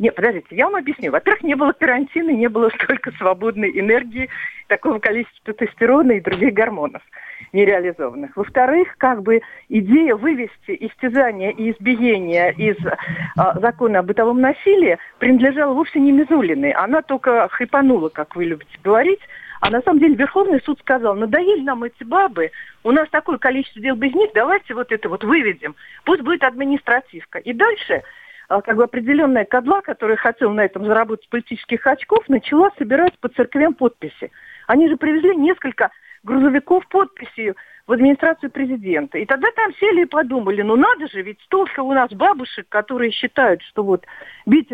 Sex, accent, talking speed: female, native, 160 wpm